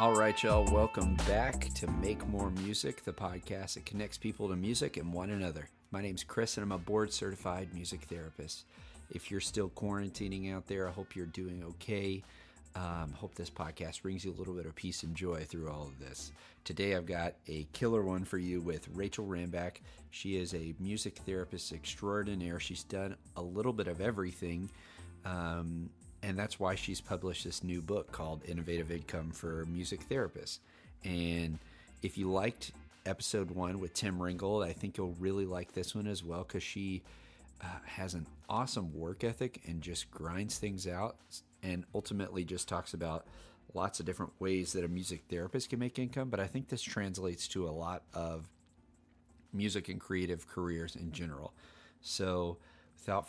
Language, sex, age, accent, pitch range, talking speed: English, male, 40-59, American, 85-100 Hz, 180 wpm